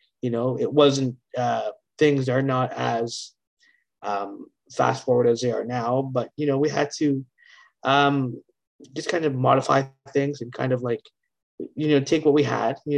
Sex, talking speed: male, 180 wpm